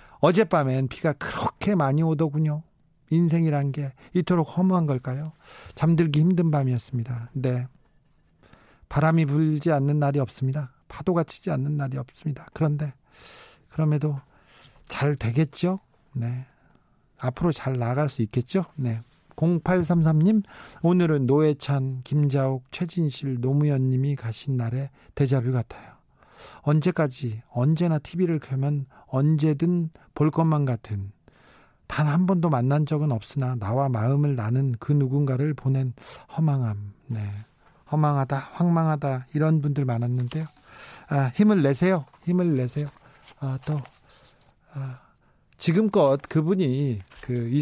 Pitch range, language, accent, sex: 130-160 Hz, Korean, native, male